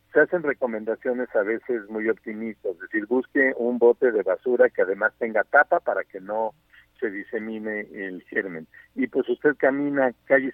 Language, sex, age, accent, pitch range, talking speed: Spanish, male, 50-69, Mexican, 115-165 Hz, 170 wpm